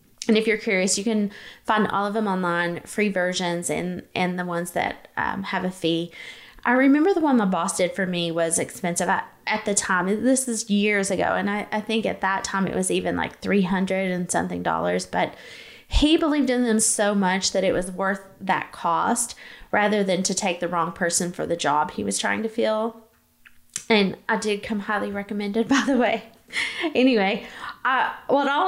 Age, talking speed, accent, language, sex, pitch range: 20-39, 200 wpm, American, English, female, 180-225 Hz